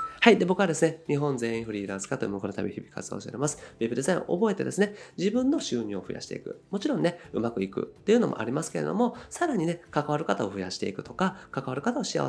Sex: male